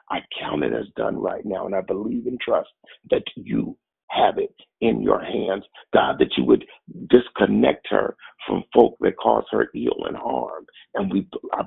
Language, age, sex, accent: English, 50-69, male, American